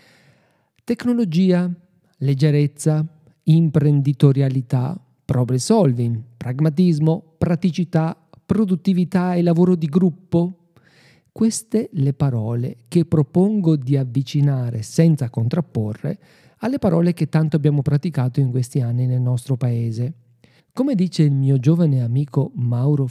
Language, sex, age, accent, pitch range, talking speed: Italian, male, 50-69, native, 125-175 Hz, 105 wpm